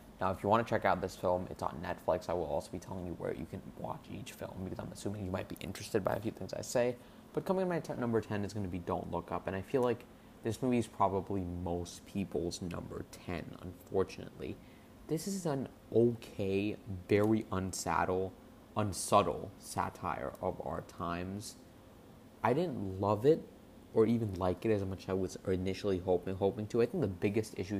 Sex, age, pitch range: male, 20-39, 90-110 Hz